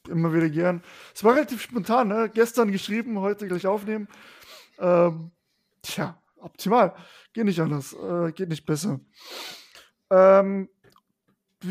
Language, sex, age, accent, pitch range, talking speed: German, male, 20-39, German, 175-215 Hz, 125 wpm